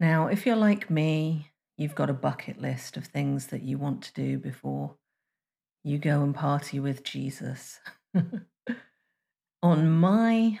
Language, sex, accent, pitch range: English, female, British, 140-180 Hz